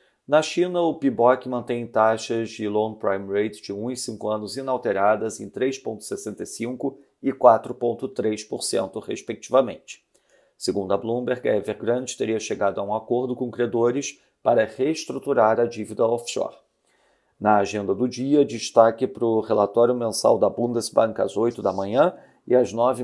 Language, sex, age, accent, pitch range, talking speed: Portuguese, male, 40-59, Brazilian, 110-125 Hz, 145 wpm